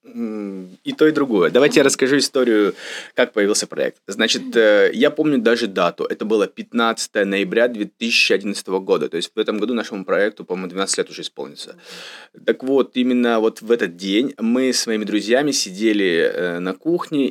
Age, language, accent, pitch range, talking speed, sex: 20-39, Russian, native, 100-130 Hz, 165 wpm, male